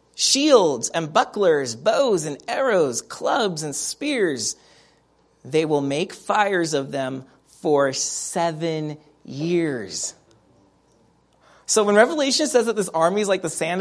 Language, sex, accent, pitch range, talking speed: English, male, American, 170-270 Hz, 125 wpm